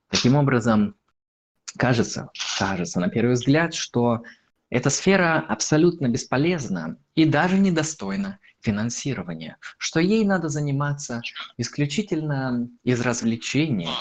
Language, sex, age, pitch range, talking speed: Russian, male, 20-39, 115-170 Hz, 100 wpm